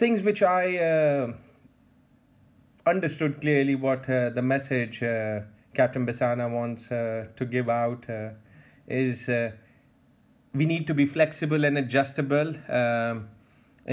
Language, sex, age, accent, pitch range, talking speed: English, male, 30-49, Indian, 120-145 Hz, 125 wpm